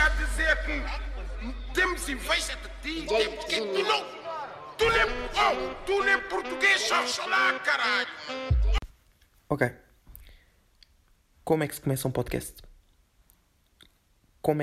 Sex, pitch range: male, 125-145 Hz